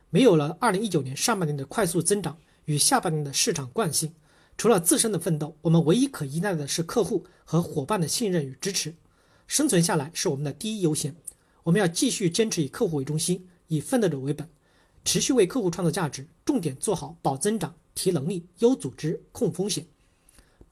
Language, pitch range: Chinese, 155-200 Hz